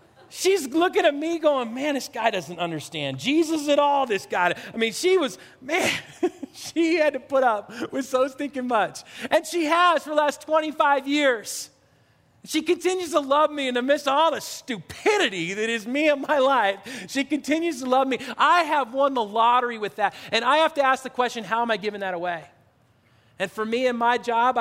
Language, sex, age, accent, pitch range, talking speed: English, male, 40-59, American, 215-280 Hz, 205 wpm